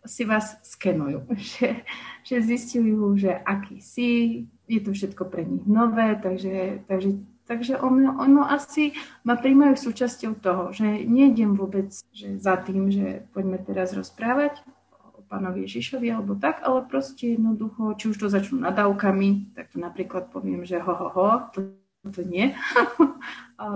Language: Slovak